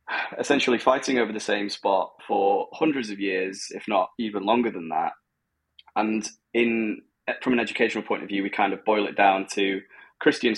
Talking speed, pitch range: 180 wpm, 95-125 Hz